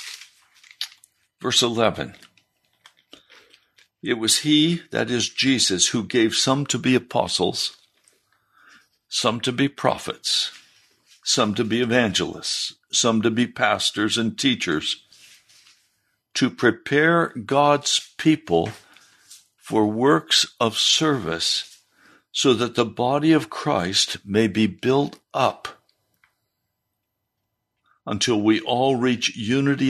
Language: English